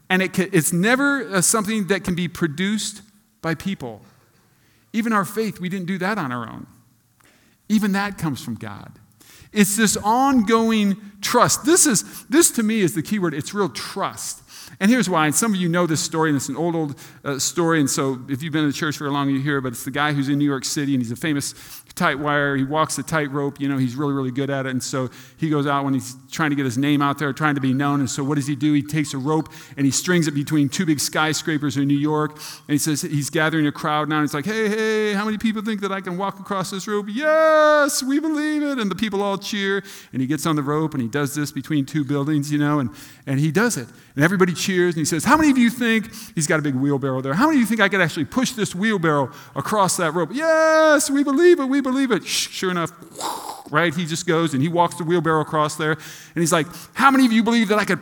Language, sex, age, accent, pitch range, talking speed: English, male, 40-59, American, 145-215 Hz, 260 wpm